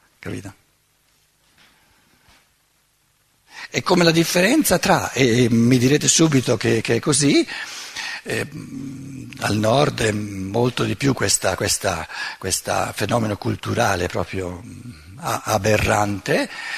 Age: 60-79